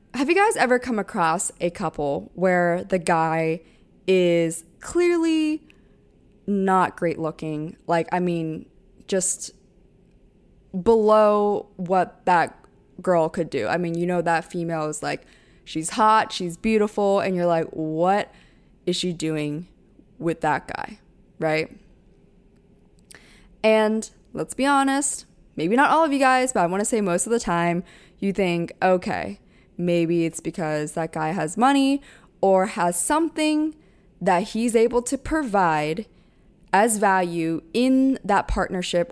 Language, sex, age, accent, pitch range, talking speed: English, female, 20-39, American, 170-210 Hz, 140 wpm